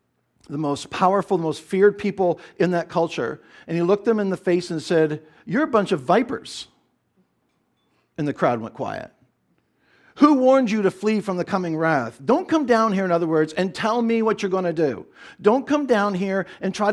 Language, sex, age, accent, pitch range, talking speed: English, male, 50-69, American, 160-205 Hz, 210 wpm